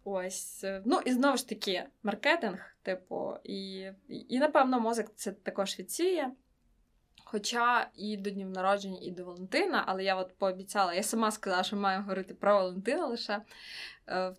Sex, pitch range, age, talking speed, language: female, 190-225 Hz, 20-39, 160 wpm, Ukrainian